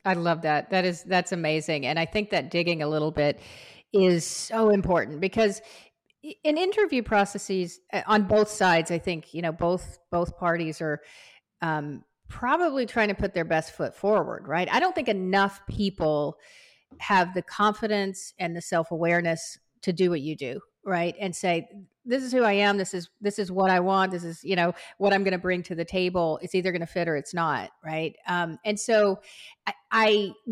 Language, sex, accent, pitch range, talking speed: English, female, American, 165-205 Hz, 200 wpm